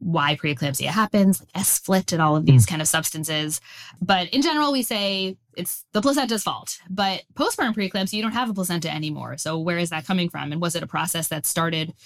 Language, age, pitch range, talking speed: English, 20-39, 155-205 Hz, 210 wpm